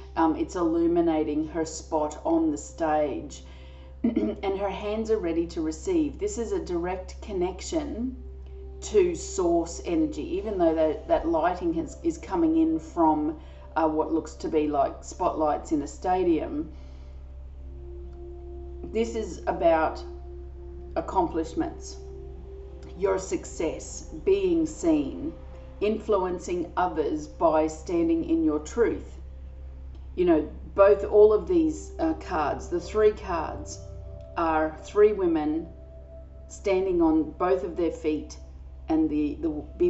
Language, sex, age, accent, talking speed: English, female, 40-59, Australian, 125 wpm